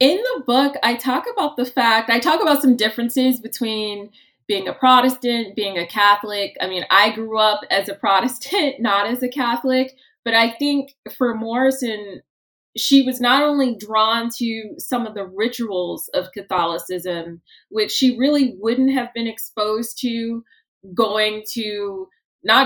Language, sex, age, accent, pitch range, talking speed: English, female, 20-39, American, 200-255 Hz, 160 wpm